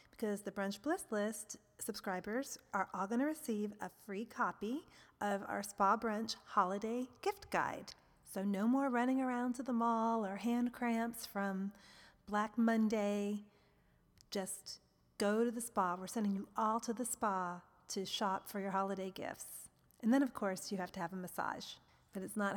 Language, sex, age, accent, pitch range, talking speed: English, female, 30-49, American, 195-240 Hz, 175 wpm